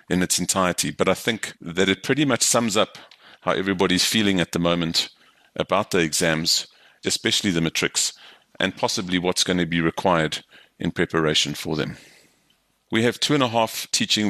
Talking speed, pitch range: 175 wpm, 85-100 Hz